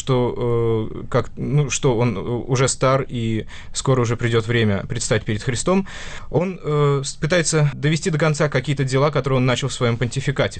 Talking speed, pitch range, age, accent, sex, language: 170 wpm, 115-145 Hz, 20-39, native, male, Russian